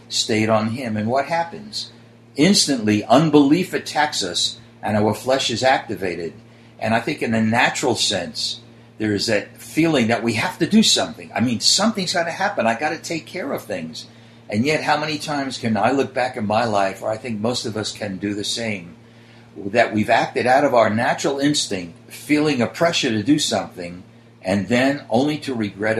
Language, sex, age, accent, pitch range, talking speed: English, male, 60-79, American, 110-140 Hz, 200 wpm